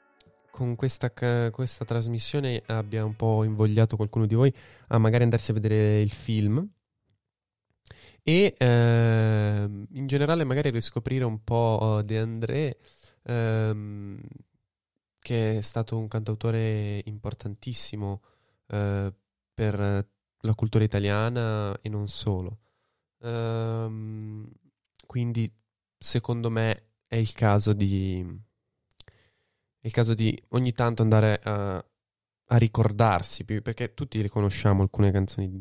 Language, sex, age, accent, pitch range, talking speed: Italian, male, 20-39, native, 100-115 Hz, 115 wpm